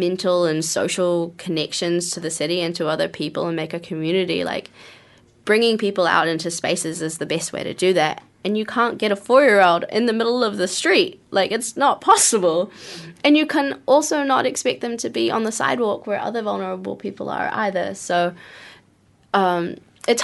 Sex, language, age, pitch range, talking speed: female, English, 20-39, 165-210 Hz, 195 wpm